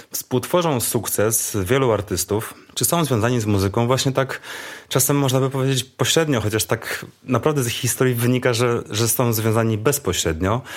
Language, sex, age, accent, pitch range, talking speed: Polish, male, 30-49, native, 95-125 Hz, 155 wpm